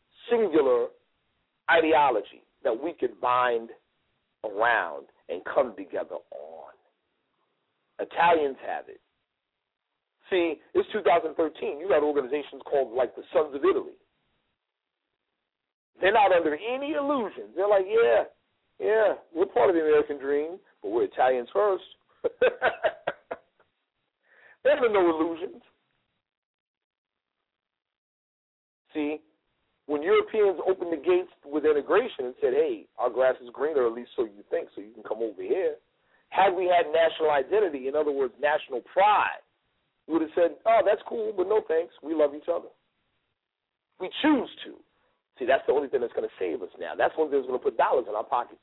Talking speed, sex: 150 wpm, male